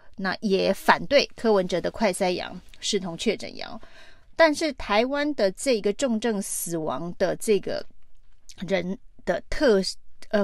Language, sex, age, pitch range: Chinese, female, 30-49, 190-240 Hz